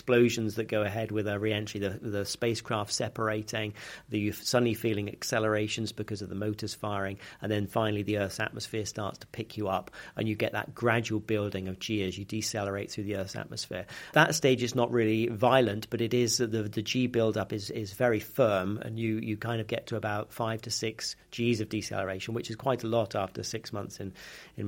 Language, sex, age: English, male, 40-59